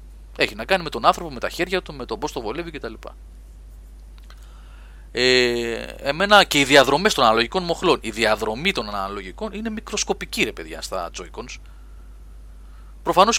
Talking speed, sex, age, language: 150 wpm, male, 30-49, Greek